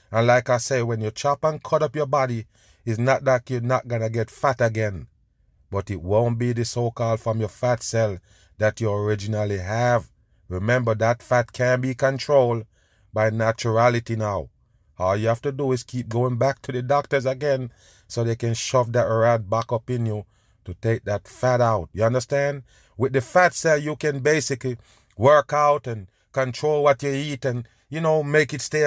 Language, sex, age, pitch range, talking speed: English, male, 30-49, 115-145 Hz, 200 wpm